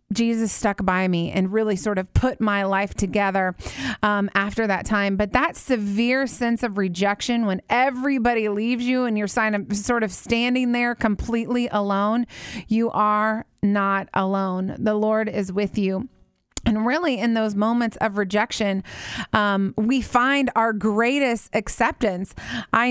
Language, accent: English, American